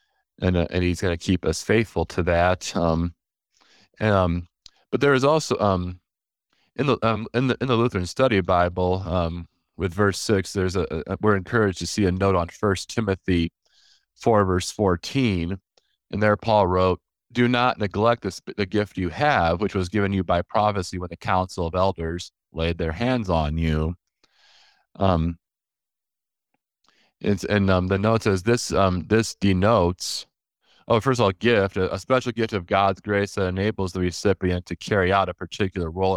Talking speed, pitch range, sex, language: 180 wpm, 90-105 Hz, male, English